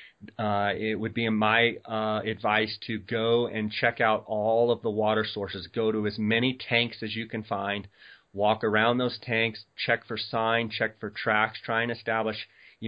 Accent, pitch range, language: American, 105-115 Hz, English